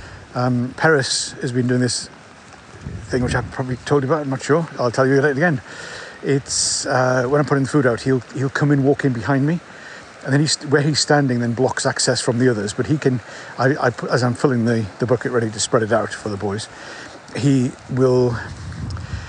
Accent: British